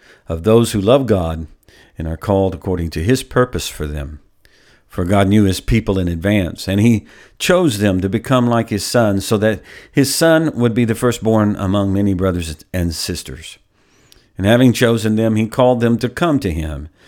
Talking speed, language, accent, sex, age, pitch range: 190 wpm, English, American, male, 50-69, 95-135 Hz